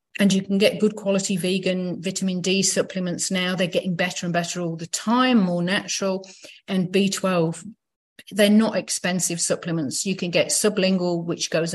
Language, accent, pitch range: English, British, 170-205 Hz